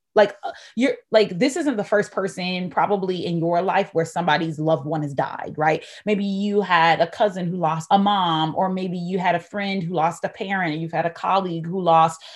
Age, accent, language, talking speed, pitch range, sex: 20-39, American, English, 220 wpm, 165-200 Hz, female